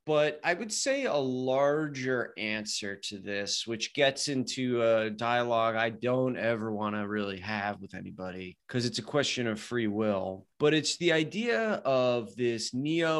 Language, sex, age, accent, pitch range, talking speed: English, male, 30-49, American, 110-135 Hz, 170 wpm